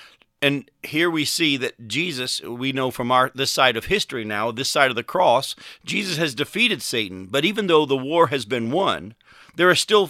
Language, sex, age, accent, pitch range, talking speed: English, male, 40-59, American, 125-170 Hz, 200 wpm